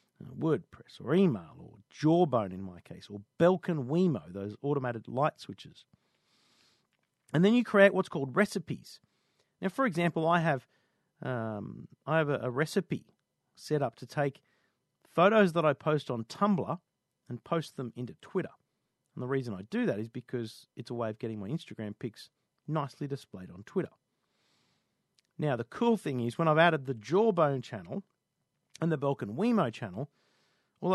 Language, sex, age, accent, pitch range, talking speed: English, male, 40-59, Australian, 125-170 Hz, 165 wpm